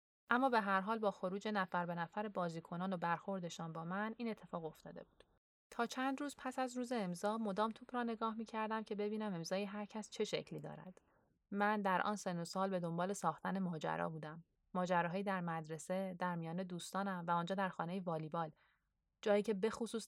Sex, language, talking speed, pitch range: female, Persian, 185 wpm, 170-200 Hz